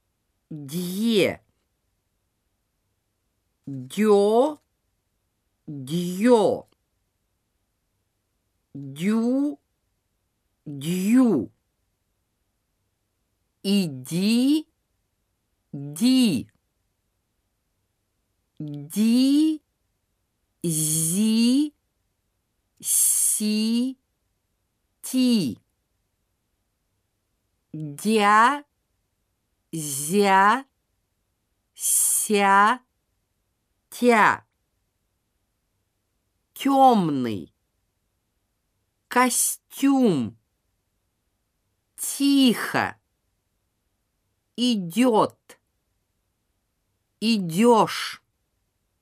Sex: female